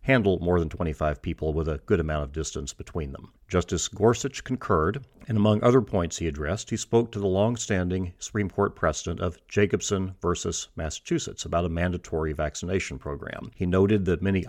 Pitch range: 80-100 Hz